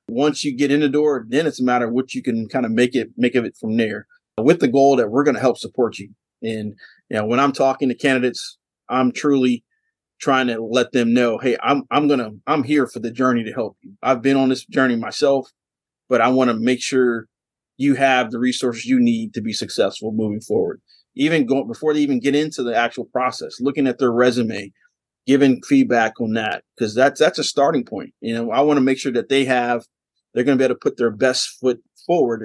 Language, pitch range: English, 120-140 Hz